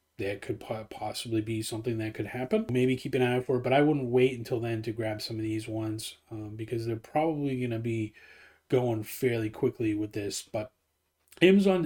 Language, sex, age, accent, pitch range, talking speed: English, male, 30-49, American, 110-130 Hz, 205 wpm